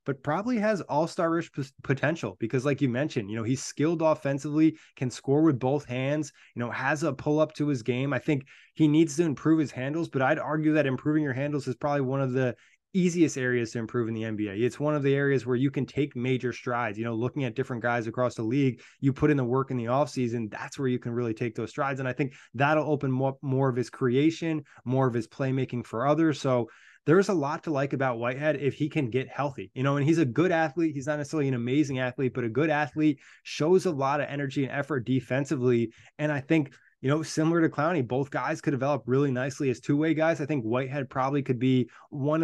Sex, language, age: male, English, 20-39